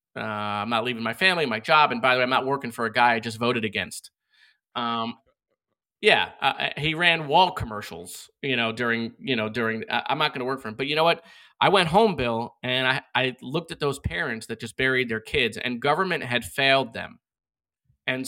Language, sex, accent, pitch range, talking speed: English, male, American, 115-145 Hz, 225 wpm